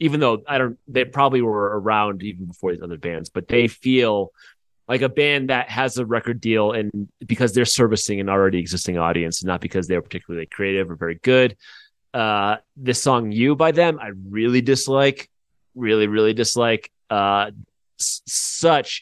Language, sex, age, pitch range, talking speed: English, male, 30-49, 95-130 Hz, 175 wpm